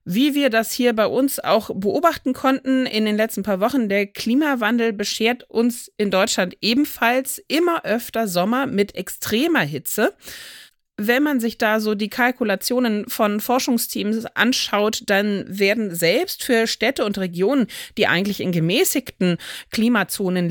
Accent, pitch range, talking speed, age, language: German, 195-255 Hz, 145 wpm, 30-49, German